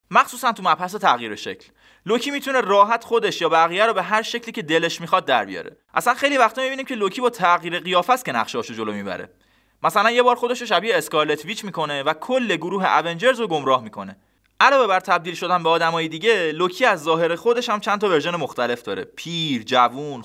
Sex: male